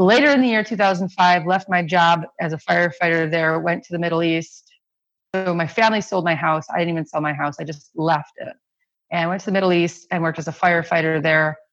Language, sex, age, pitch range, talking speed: English, female, 30-49, 155-185 Hz, 235 wpm